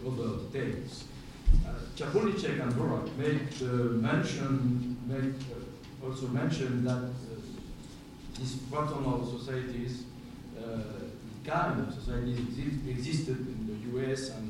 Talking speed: 110 wpm